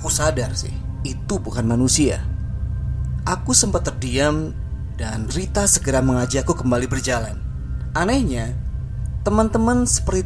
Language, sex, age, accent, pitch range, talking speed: Indonesian, male, 20-39, native, 90-120 Hz, 105 wpm